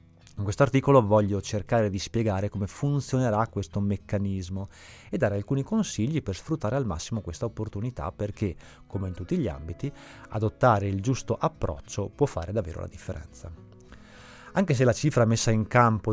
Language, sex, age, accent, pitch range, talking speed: Italian, male, 30-49, native, 95-120 Hz, 160 wpm